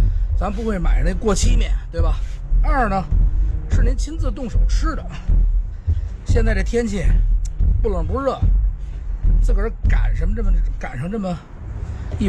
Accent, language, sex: native, Chinese, male